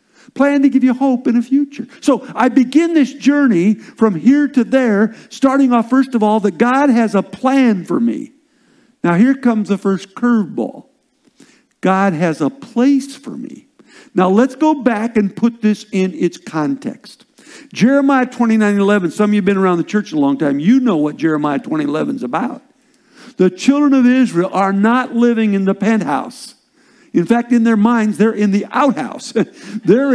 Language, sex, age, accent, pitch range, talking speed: English, male, 50-69, American, 210-275 Hz, 185 wpm